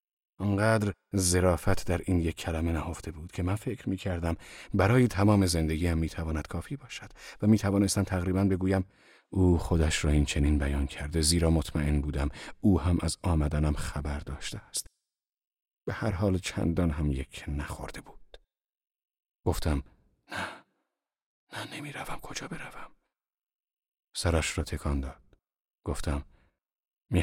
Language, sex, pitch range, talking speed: Persian, male, 75-95 Hz, 135 wpm